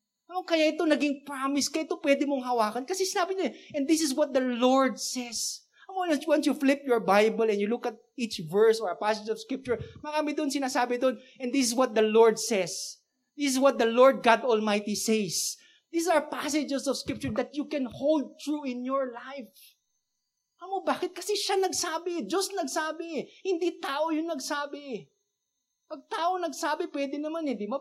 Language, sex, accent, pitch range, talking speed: English, male, Filipino, 225-300 Hz, 190 wpm